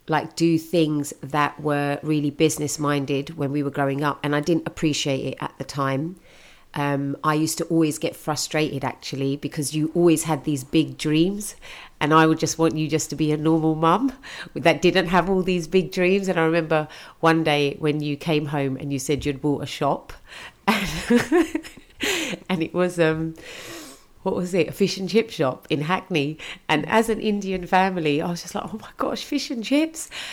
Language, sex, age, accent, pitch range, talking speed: English, female, 40-59, British, 145-175 Hz, 200 wpm